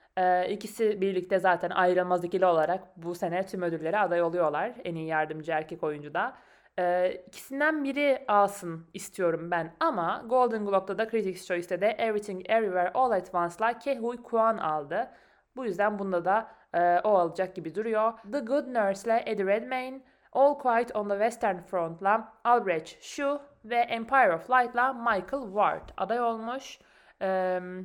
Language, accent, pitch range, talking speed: Turkish, native, 180-245 Hz, 155 wpm